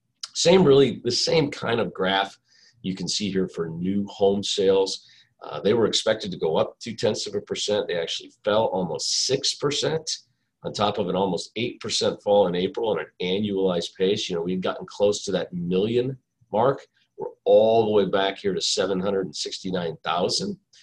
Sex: male